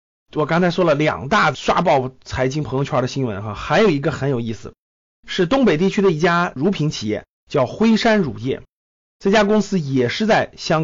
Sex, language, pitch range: male, Chinese, 130-205 Hz